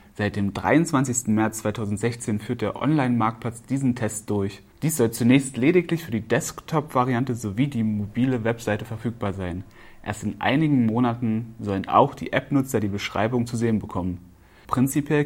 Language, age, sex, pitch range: German, 30-49, male, 105-125 Hz